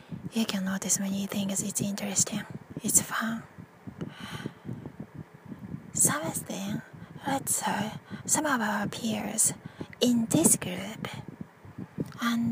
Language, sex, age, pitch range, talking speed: English, female, 20-39, 180-215 Hz, 105 wpm